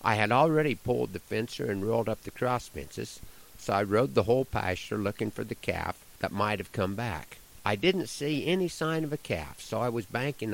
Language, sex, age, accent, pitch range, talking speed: English, male, 50-69, American, 95-120 Hz, 220 wpm